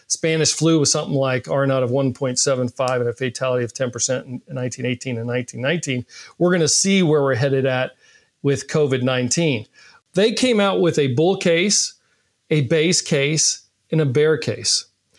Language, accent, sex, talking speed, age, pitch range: English, American, male, 160 wpm, 40-59, 130-165 Hz